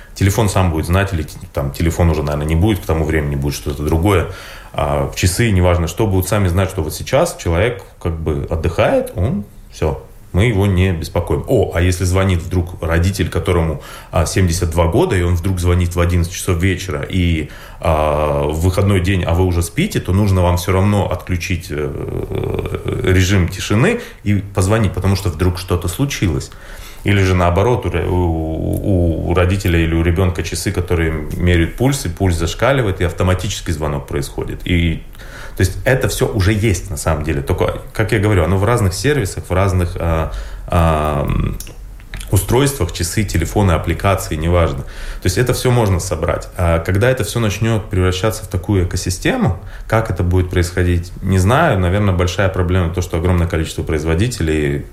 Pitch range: 85-100 Hz